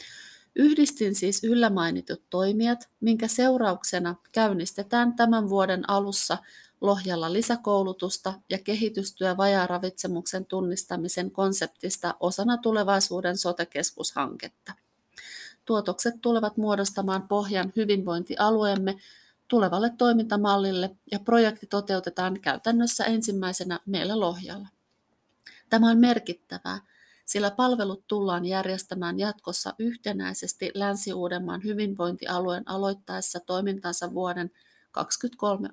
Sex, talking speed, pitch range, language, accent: female, 80 wpm, 180-225 Hz, Finnish, native